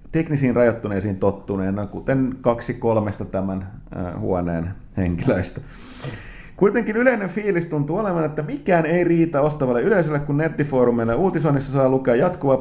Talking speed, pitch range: 130 wpm, 110-155 Hz